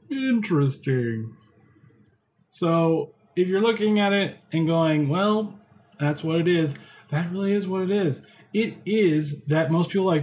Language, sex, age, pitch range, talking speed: English, male, 20-39, 135-175 Hz, 155 wpm